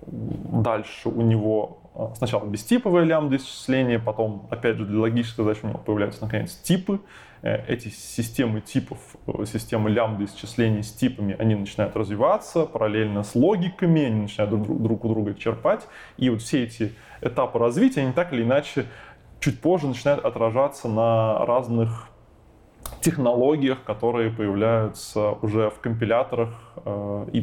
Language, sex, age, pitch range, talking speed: Russian, male, 20-39, 110-130 Hz, 135 wpm